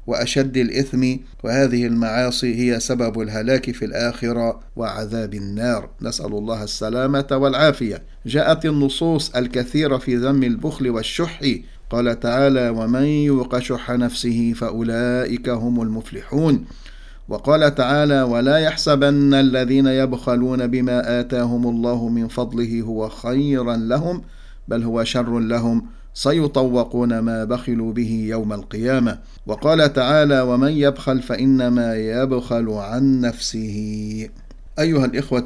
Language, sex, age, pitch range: English, male, 50-69, 115-140 Hz